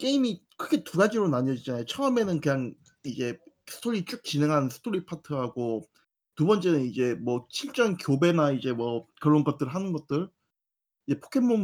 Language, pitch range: Korean, 130-195 Hz